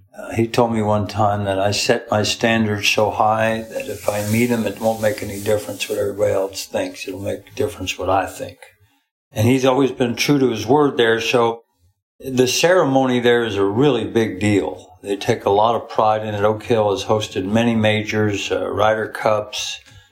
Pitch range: 100-120 Hz